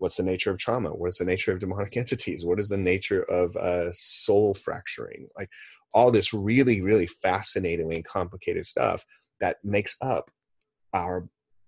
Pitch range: 90-120 Hz